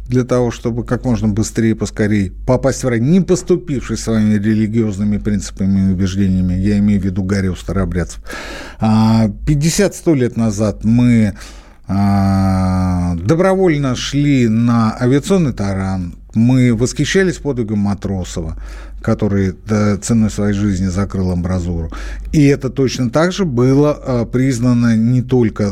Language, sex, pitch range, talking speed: Russian, male, 100-145 Hz, 120 wpm